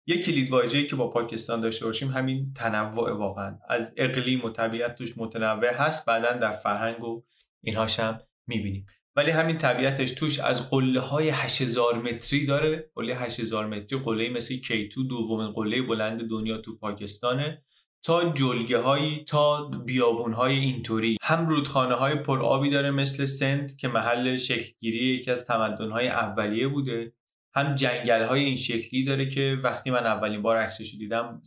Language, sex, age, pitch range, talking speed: Persian, male, 20-39, 115-140 Hz, 155 wpm